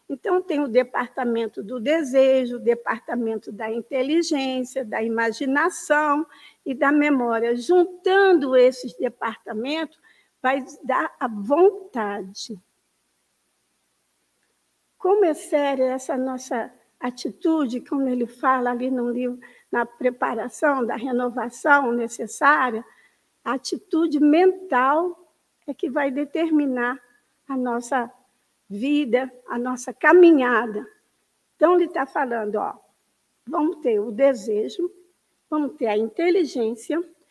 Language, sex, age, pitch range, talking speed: Portuguese, female, 50-69, 245-325 Hz, 105 wpm